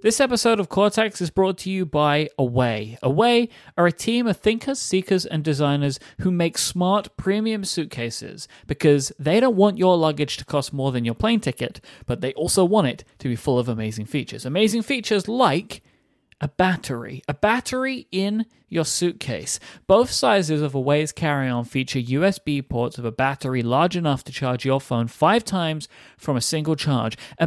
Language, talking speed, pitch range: English, 180 wpm, 130-190 Hz